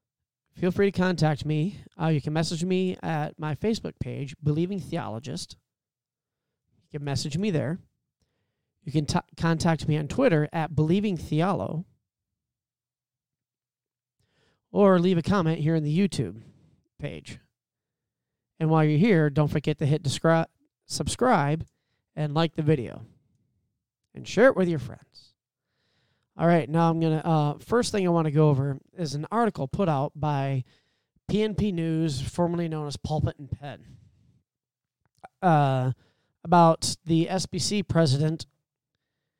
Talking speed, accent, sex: 135 wpm, American, male